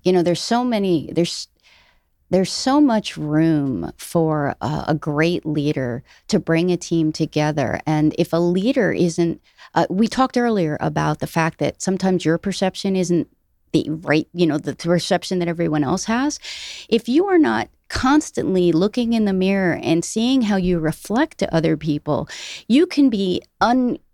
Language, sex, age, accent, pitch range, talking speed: English, female, 30-49, American, 165-240 Hz, 170 wpm